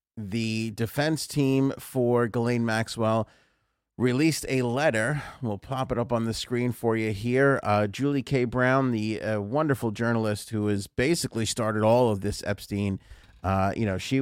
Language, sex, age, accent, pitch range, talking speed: English, male, 40-59, American, 105-130 Hz, 165 wpm